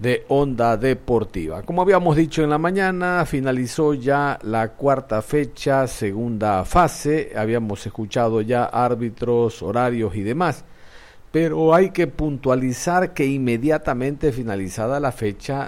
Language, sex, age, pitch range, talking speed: Spanish, male, 50-69, 115-150 Hz, 125 wpm